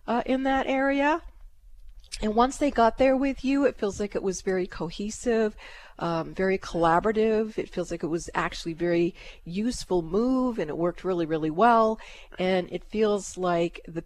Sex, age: female, 40-59